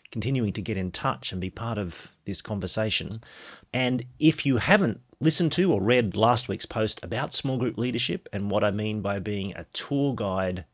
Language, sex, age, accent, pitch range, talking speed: English, male, 30-49, Australian, 90-115 Hz, 195 wpm